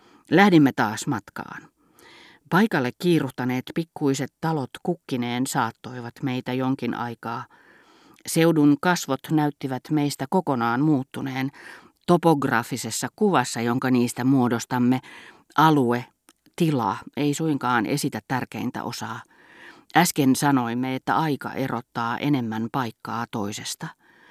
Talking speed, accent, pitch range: 95 wpm, native, 125-155 Hz